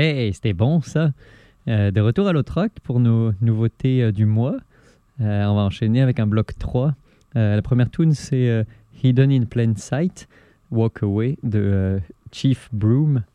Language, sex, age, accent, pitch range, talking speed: French, male, 20-39, French, 105-130 Hz, 180 wpm